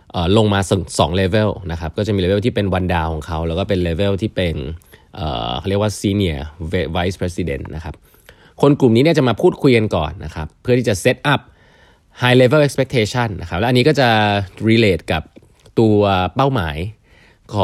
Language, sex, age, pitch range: Thai, male, 20-39, 85-120 Hz